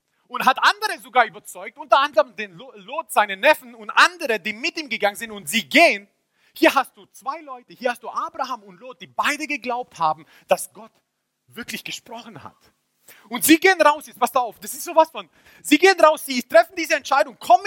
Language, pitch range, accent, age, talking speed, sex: German, 200-300 Hz, German, 40-59, 205 wpm, male